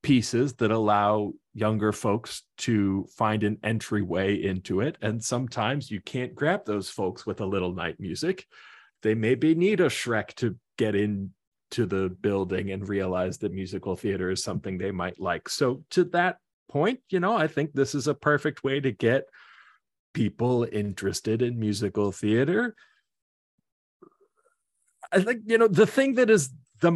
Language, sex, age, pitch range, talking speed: English, male, 30-49, 105-140 Hz, 160 wpm